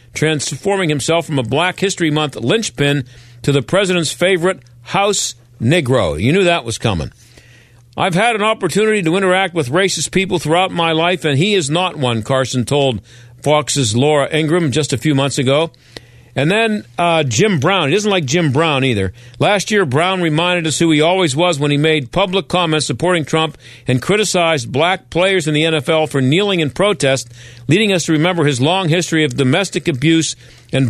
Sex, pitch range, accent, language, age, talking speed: male, 130-180 Hz, American, English, 50-69, 185 wpm